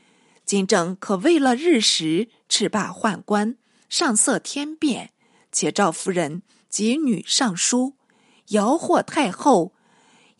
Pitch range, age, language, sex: 195-255 Hz, 50-69, Chinese, female